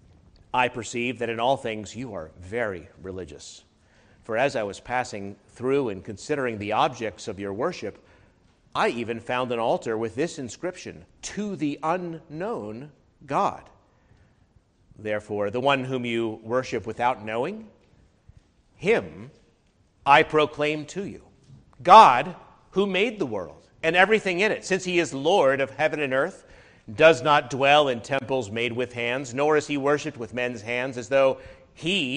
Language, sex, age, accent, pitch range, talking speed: English, male, 50-69, American, 110-150 Hz, 155 wpm